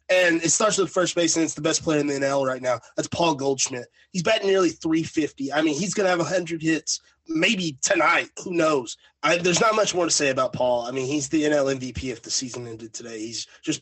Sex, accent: male, American